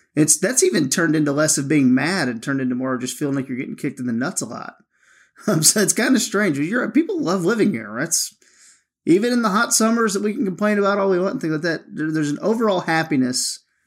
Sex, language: male, English